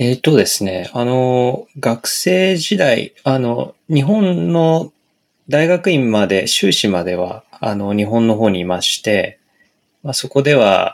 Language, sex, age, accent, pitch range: Japanese, male, 20-39, native, 105-150 Hz